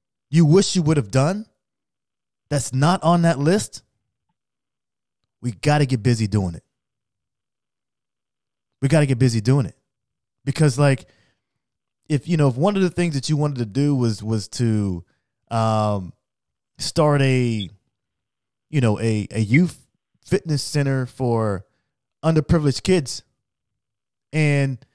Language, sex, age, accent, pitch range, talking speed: English, male, 20-39, American, 120-155 Hz, 135 wpm